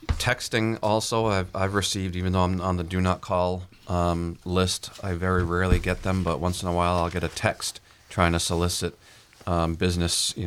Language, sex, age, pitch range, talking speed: English, male, 40-59, 90-100 Hz, 200 wpm